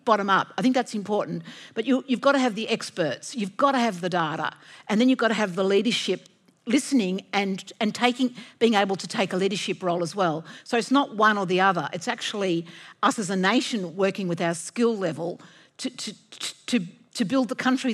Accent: Australian